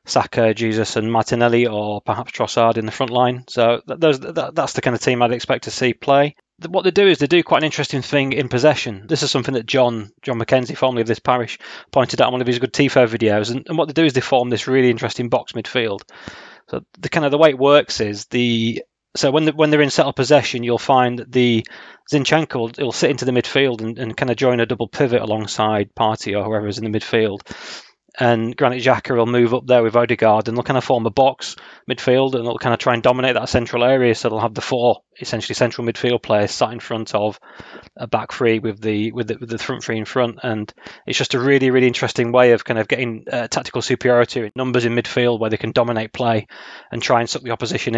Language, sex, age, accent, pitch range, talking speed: English, male, 20-39, British, 115-130 Hz, 240 wpm